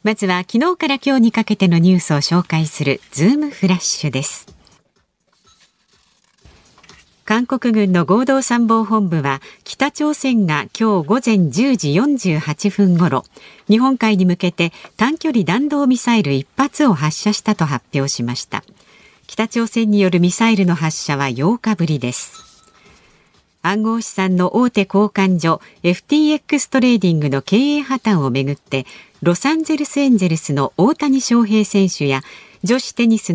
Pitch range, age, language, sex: 170-240 Hz, 50-69, Japanese, female